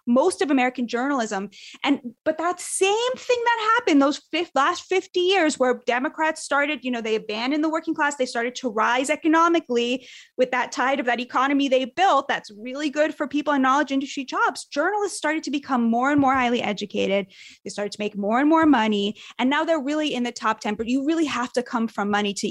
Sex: female